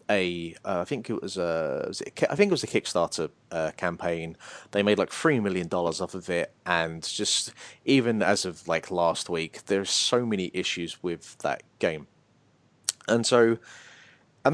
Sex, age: male, 30-49